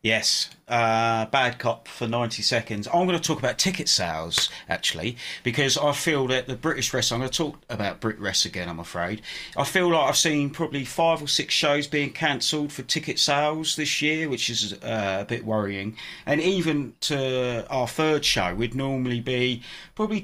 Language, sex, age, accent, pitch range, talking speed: English, male, 30-49, British, 120-150 Hz, 195 wpm